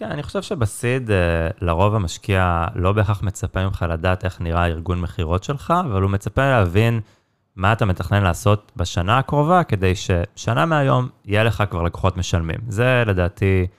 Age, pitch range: 30-49, 90-110 Hz